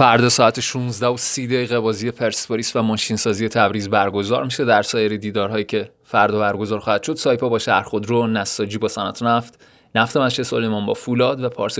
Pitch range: 105-125 Hz